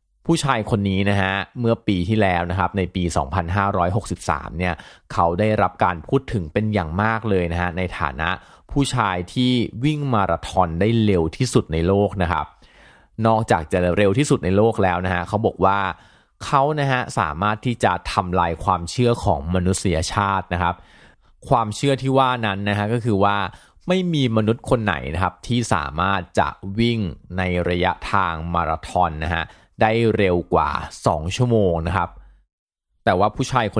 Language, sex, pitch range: Thai, male, 90-115 Hz